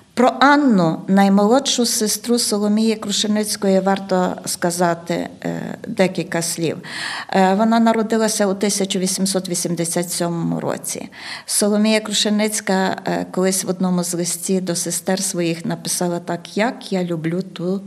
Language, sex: Ukrainian, female